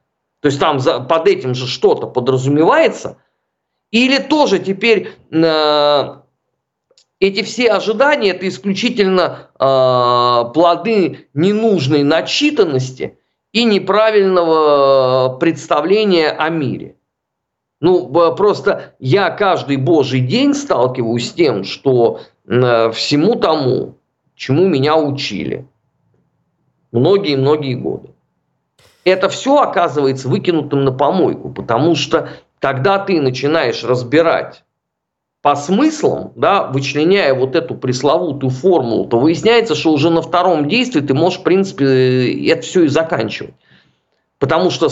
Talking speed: 110 wpm